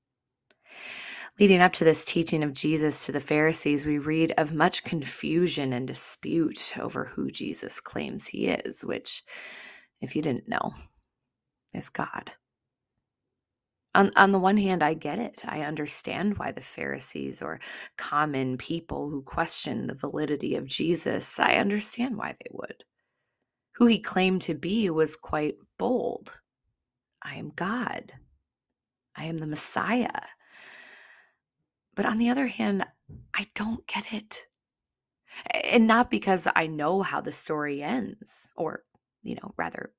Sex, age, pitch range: female, 30-49, 145-215 Hz